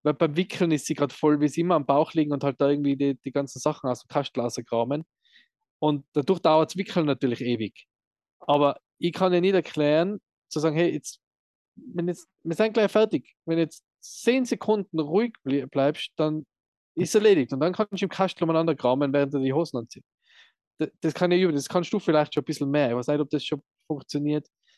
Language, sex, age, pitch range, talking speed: German, male, 20-39, 140-170 Hz, 215 wpm